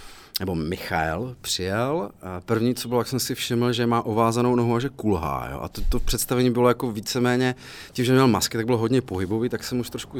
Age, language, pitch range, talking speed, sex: 30-49, Czech, 95-115 Hz, 220 wpm, male